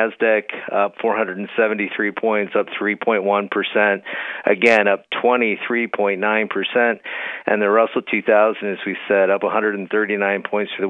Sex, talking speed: male, 115 wpm